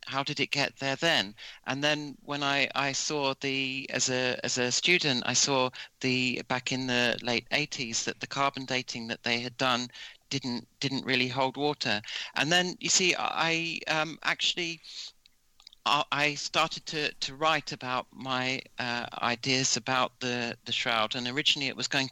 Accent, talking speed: British, 175 wpm